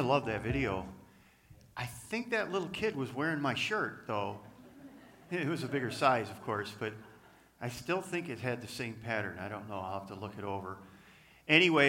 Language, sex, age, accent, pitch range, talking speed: English, male, 50-69, American, 105-150 Hz, 200 wpm